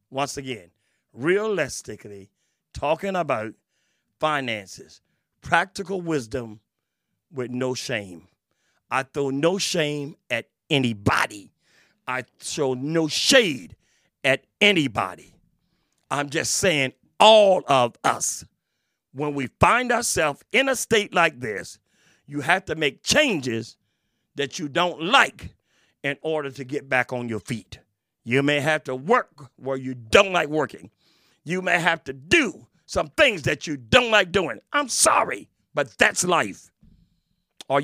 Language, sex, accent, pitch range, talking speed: English, male, American, 130-190 Hz, 130 wpm